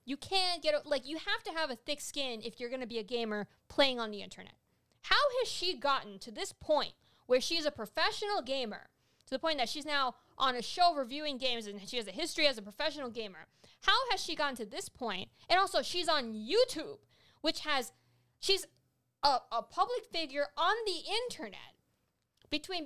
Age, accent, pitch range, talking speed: 20-39, American, 250-345 Hz, 200 wpm